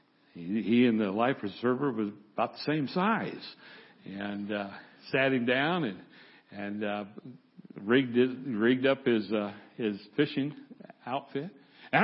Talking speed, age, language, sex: 140 wpm, 60-79, English, male